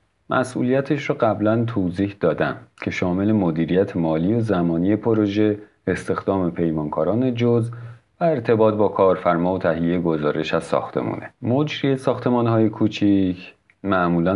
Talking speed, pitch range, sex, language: 115 wpm, 85-110 Hz, male, Persian